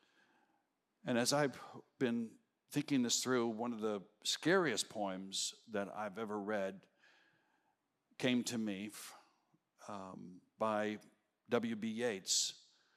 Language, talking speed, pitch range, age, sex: English, 105 wpm, 105-140 Hz, 60-79, male